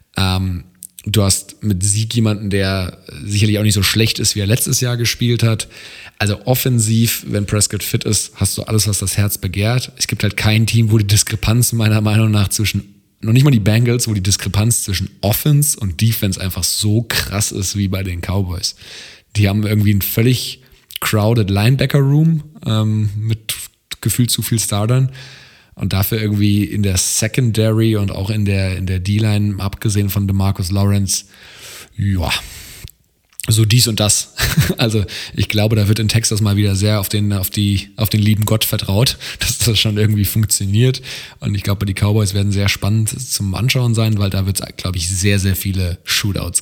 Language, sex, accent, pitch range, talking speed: German, male, German, 100-115 Hz, 185 wpm